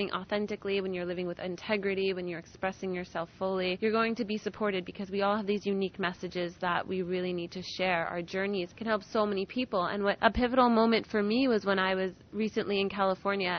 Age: 20-39